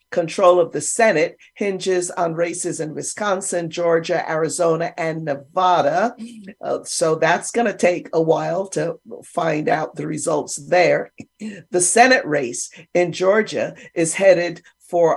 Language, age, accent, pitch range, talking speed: English, 50-69, American, 165-215 Hz, 140 wpm